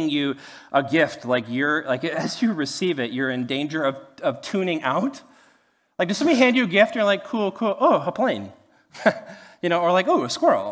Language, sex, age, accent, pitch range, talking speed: English, male, 30-49, American, 145-235 Hz, 215 wpm